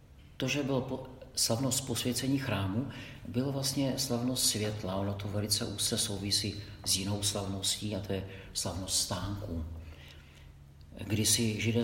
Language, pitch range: Czech, 100-120 Hz